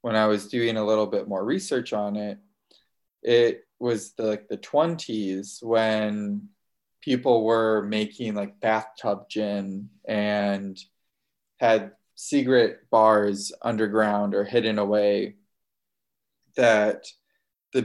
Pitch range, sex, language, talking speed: 105-125 Hz, male, English, 110 wpm